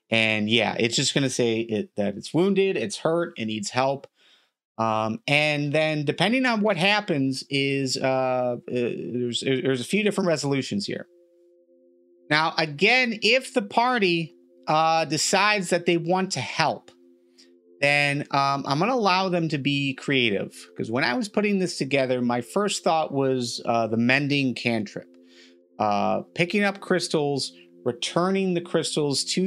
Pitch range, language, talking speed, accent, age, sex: 115-170 Hz, English, 155 wpm, American, 30-49, male